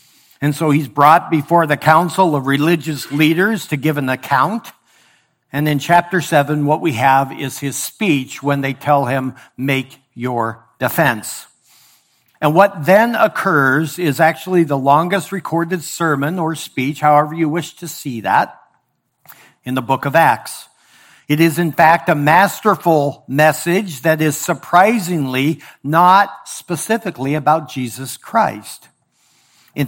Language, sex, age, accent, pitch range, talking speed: English, male, 60-79, American, 140-175 Hz, 140 wpm